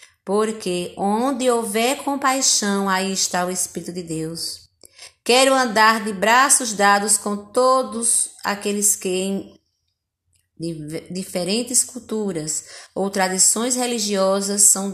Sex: female